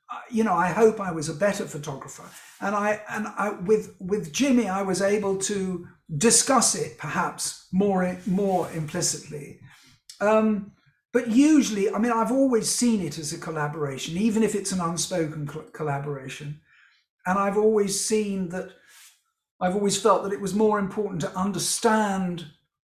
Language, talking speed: English, 155 wpm